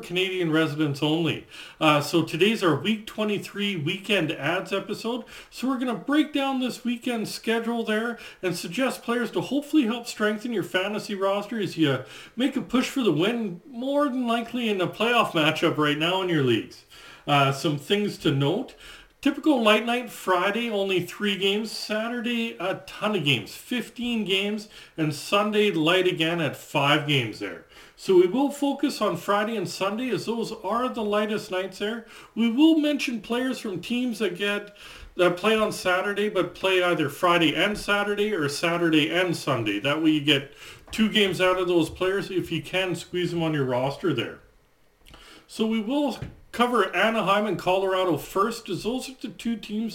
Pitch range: 170-230 Hz